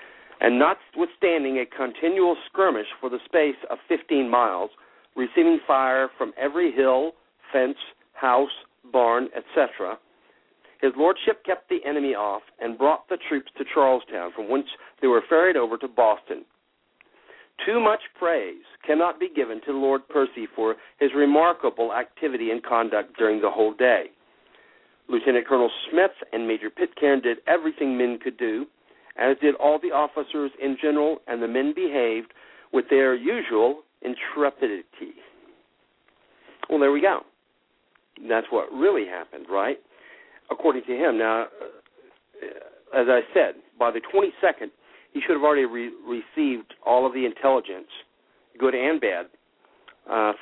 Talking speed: 140 wpm